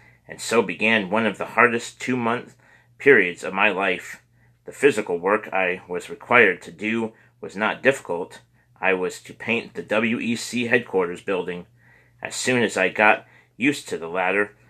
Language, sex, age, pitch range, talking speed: English, male, 30-49, 90-120 Hz, 165 wpm